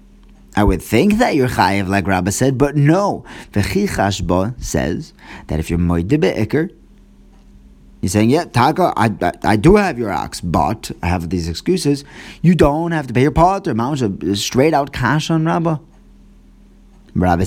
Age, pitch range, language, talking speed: 30-49, 90-135 Hz, English, 170 wpm